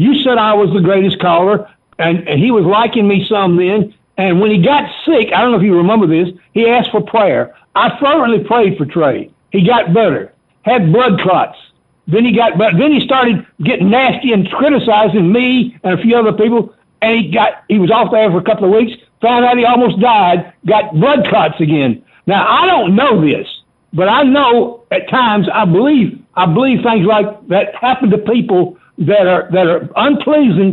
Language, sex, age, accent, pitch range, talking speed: English, male, 60-79, American, 180-235 Hz, 205 wpm